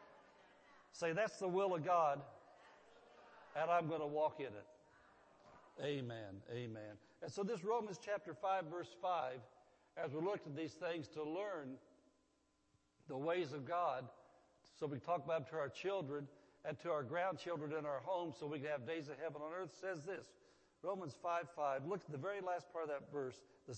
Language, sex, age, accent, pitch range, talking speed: English, male, 60-79, American, 140-180 Hz, 185 wpm